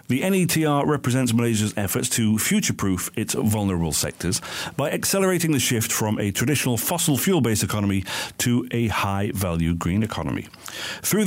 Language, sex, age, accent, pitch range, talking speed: English, male, 50-69, British, 105-145 Hz, 140 wpm